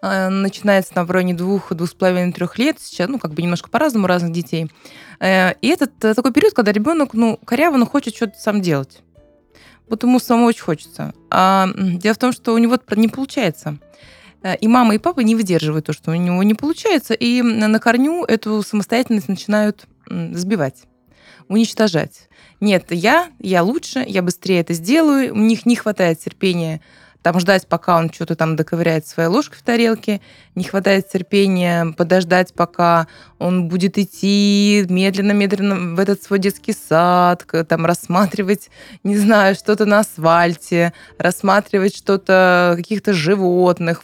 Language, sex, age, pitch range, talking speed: Russian, female, 20-39, 175-225 Hz, 150 wpm